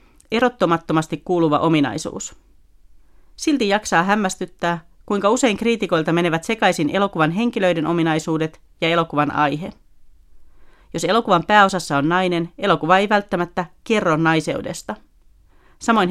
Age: 40-59